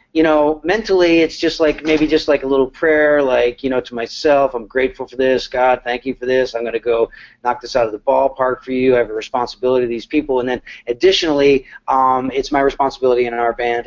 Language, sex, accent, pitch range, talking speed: English, male, American, 120-140 Hz, 240 wpm